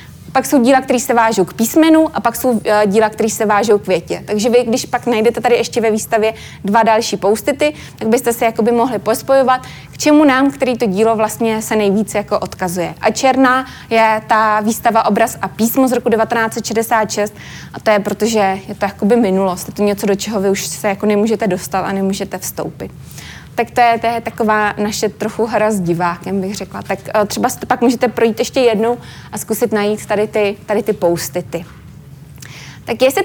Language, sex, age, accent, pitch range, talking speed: Czech, female, 20-39, native, 205-245 Hz, 195 wpm